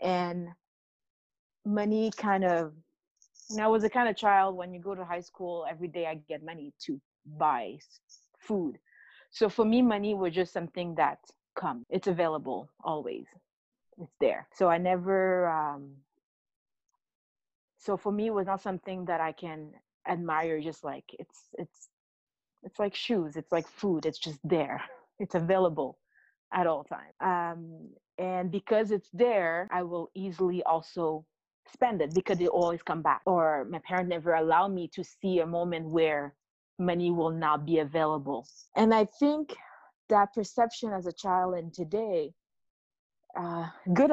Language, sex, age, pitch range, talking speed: English, female, 30-49, 165-210 Hz, 160 wpm